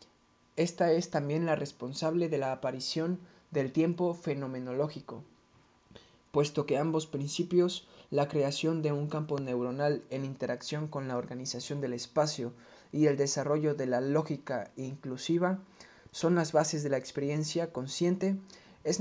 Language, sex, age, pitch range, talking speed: Spanish, male, 20-39, 130-155 Hz, 135 wpm